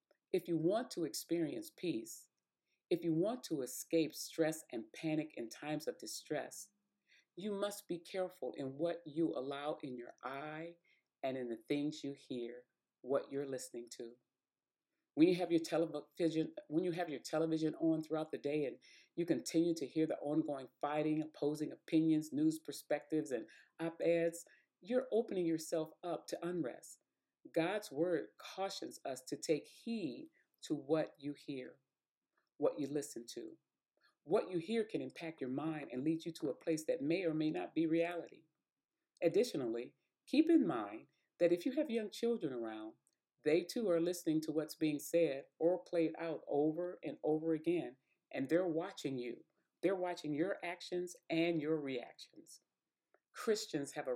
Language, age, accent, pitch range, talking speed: English, 40-59, American, 145-175 Hz, 165 wpm